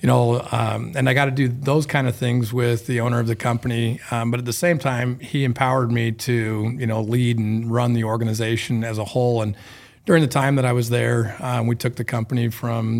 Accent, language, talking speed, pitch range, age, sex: American, English, 240 wpm, 115-125 Hz, 40-59, male